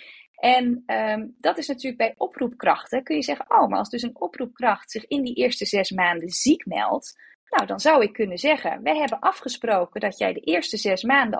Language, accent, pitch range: Dutch, Dutch, 205-275 Hz